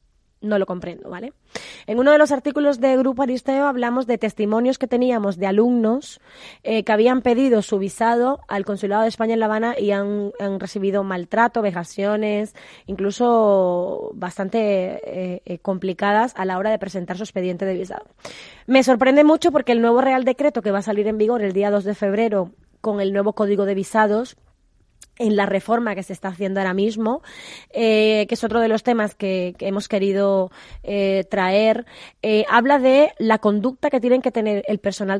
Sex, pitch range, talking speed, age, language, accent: female, 195-240 Hz, 190 wpm, 20-39, Spanish, Spanish